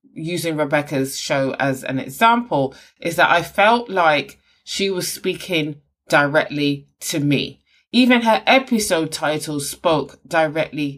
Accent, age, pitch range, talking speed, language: British, 20-39, 155-230 Hz, 125 wpm, English